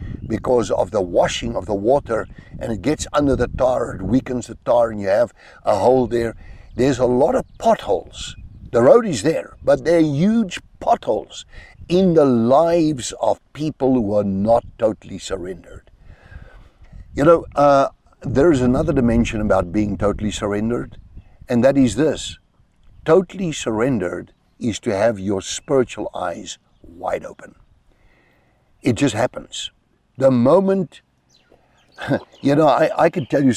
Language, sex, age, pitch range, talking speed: English, male, 60-79, 100-125 Hz, 150 wpm